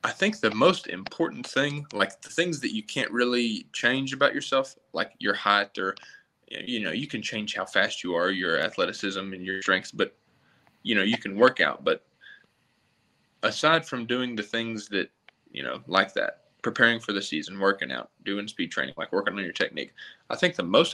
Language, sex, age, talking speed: English, male, 20-39, 200 wpm